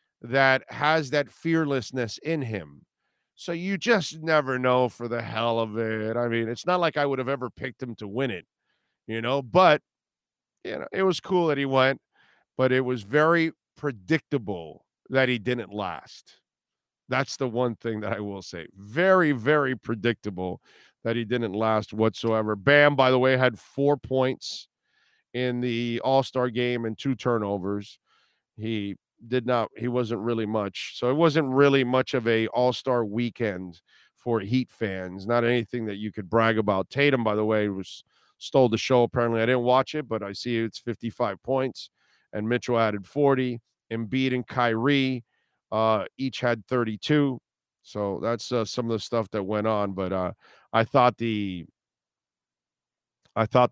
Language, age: English, 50-69